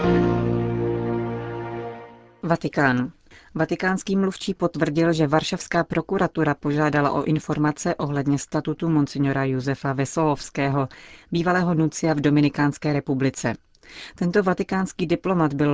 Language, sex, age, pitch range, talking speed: Czech, female, 40-59, 140-160 Hz, 90 wpm